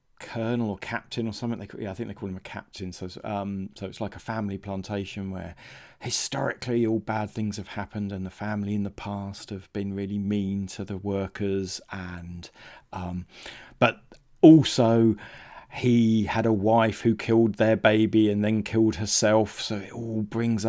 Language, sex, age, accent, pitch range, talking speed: English, male, 40-59, British, 100-115 Hz, 185 wpm